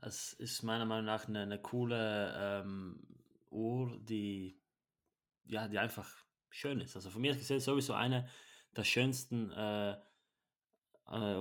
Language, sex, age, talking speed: German, male, 20-39, 135 wpm